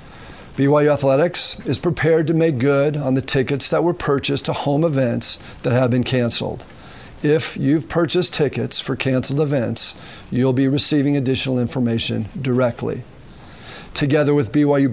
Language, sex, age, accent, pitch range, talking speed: English, male, 50-69, American, 125-155 Hz, 145 wpm